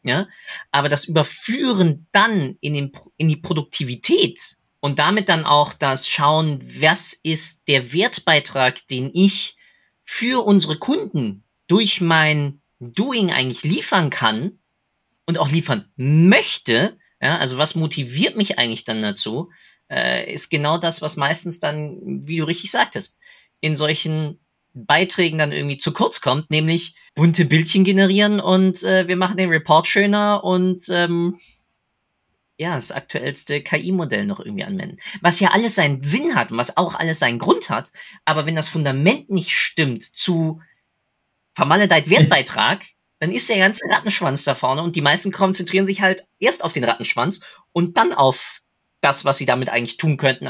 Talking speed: 155 wpm